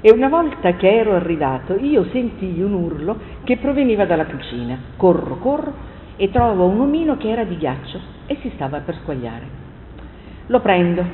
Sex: female